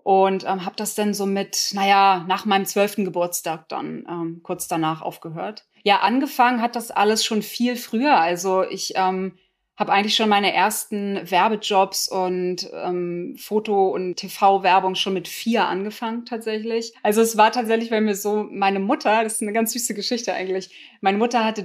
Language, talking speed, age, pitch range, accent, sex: German, 175 wpm, 20-39, 185-215 Hz, German, female